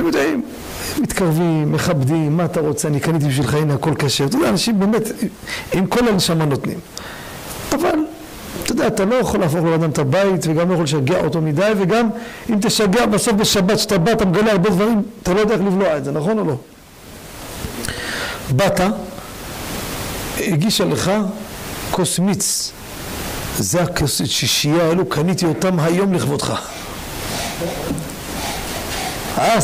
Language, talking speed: Hebrew, 140 wpm